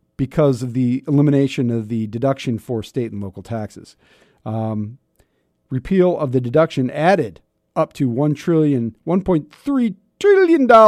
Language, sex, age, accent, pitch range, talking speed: English, male, 40-59, American, 115-155 Hz, 130 wpm